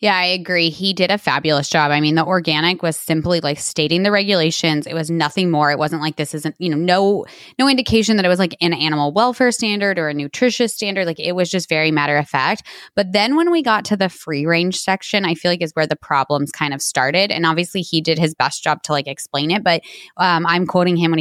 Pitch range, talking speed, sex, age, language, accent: 160-210 Hz, 250 wpm, female, 20-39, English, American